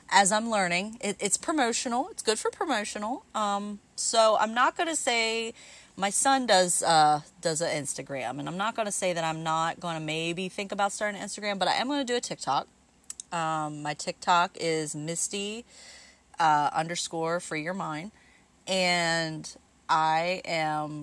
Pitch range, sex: 155-200 Hz, female